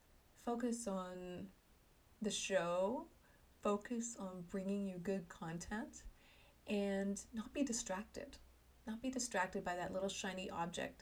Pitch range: 180-210 Hz